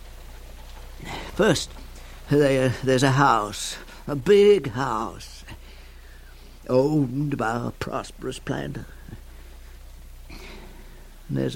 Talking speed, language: 65 wpm, English